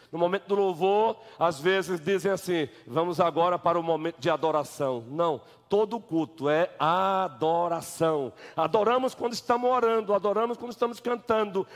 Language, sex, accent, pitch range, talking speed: Portuguese, male, Brazilian, 200-245 Hz, 145 wpm